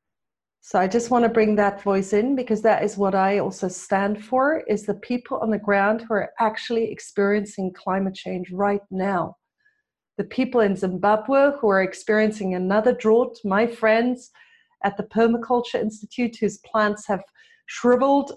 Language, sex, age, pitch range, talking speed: English, female, 40-59, 200-245 Hz, 165 wpm